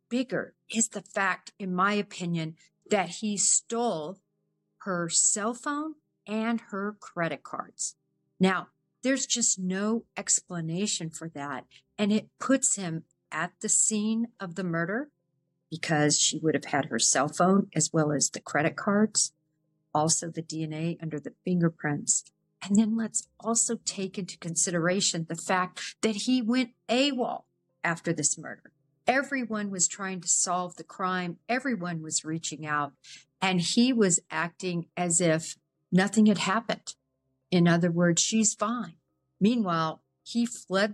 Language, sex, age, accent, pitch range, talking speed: English, female, 50-69, American, 165-215 Hz, 145 wpm